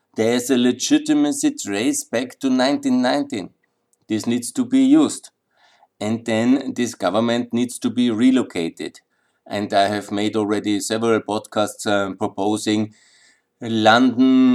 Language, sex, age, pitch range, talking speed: German, male, 50-69, 105-165 Hz, 125 wpm